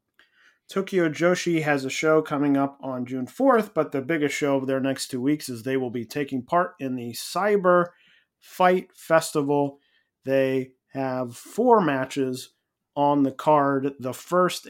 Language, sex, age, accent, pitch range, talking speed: English, male, 30-49, American, 125-160 Hz, 160 wpm